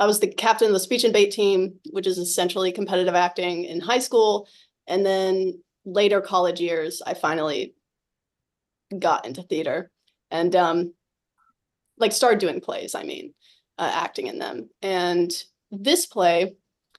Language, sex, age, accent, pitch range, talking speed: English, female, 30-49, American, 185-240 Hz, 150 wpm